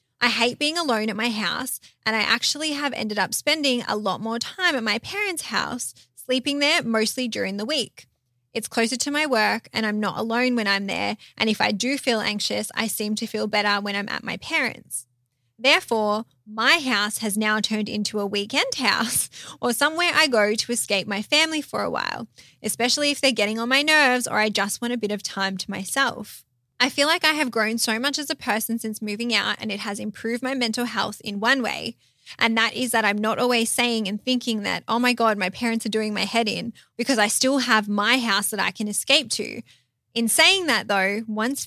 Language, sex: English, female